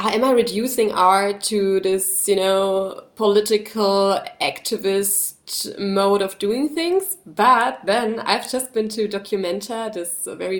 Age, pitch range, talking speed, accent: 20-39, 190-220 Hz, 135 wpm, German